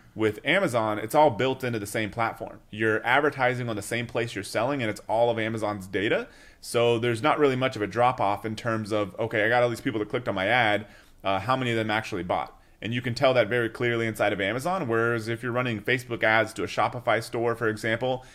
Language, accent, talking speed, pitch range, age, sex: English, American, 240 wpm, 105-120 Hz, 30-49, male